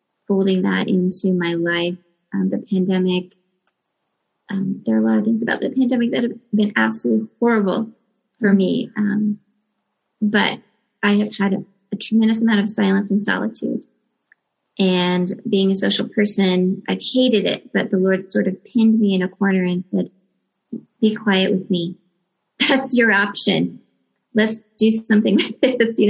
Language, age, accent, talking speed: English, 30-49, American, 165 wpm